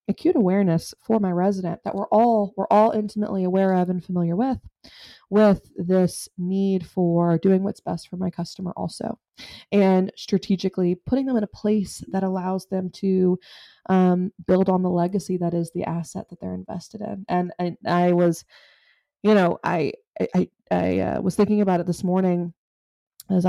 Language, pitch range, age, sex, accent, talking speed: English, 180-205 Hz, 20-39, female, American, 175 wpm